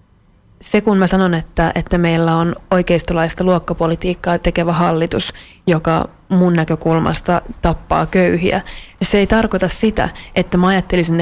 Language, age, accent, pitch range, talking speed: Finnish, 30-49, native, 170-190 Hz, 130 wpm